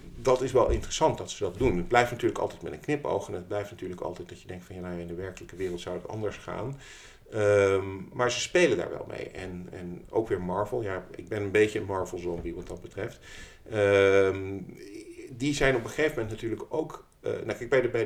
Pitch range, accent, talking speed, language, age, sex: 90-115 Hz, Dutch, 240 wpm, Dutch, 50-69, male